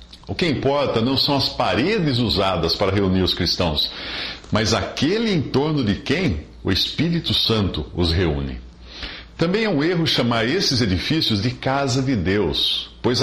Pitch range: 85-130 Hz